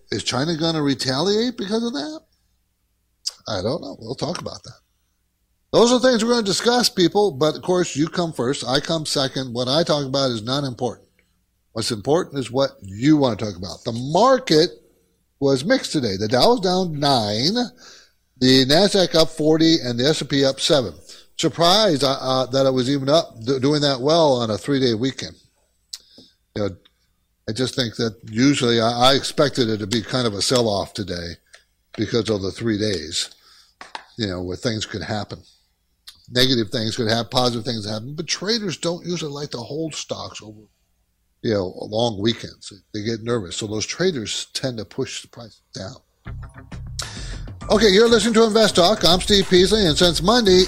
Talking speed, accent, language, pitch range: 185 wpm, American, English, 115-170 Hz